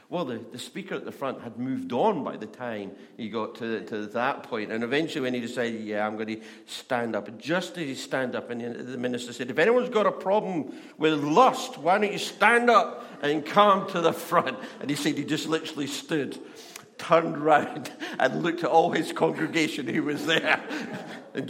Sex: male